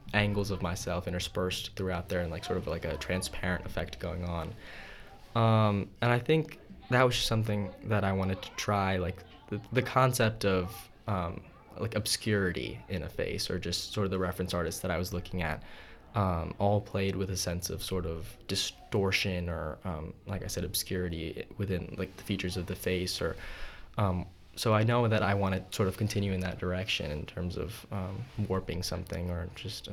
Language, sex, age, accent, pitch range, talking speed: English, male, 10-29, American, 90-105 Hz, 190 wpm